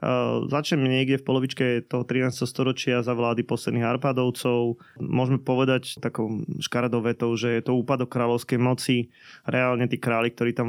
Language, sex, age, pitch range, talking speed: Slovak, male, 20-39, 120-135 Hz, 145 wpm